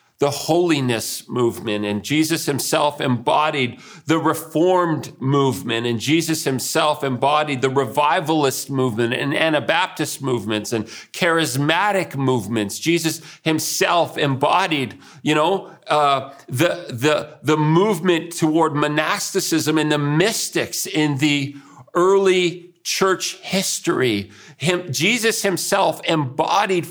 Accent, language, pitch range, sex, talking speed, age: American, English, 145-185 Hz, male, 105 wpm, 50-69